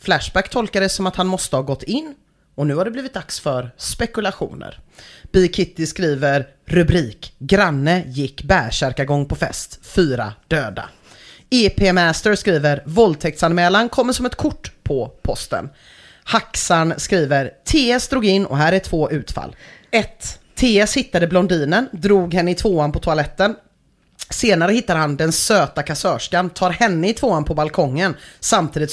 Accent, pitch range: Swedish, 150-205 Hz